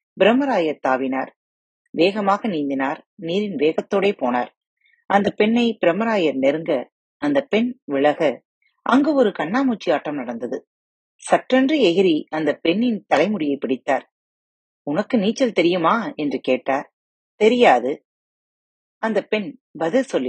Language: Tamil